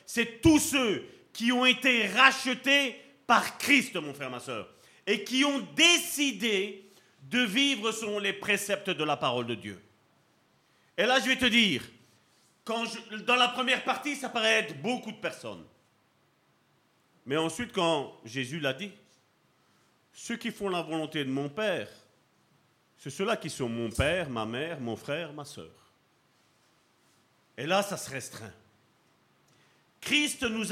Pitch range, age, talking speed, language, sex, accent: 190-245 Hz, 40-59, 155 wpm, French, male, French